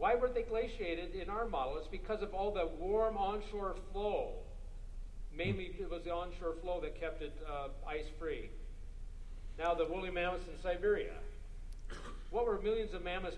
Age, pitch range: 50-69, 150-195 Hz